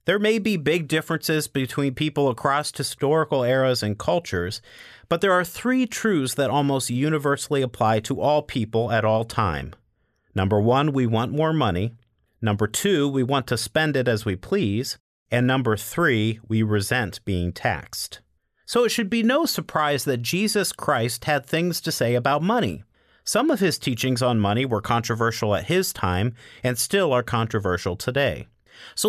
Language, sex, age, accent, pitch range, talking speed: English, male, 40-59, American, 110-155 Hz, 170 wpm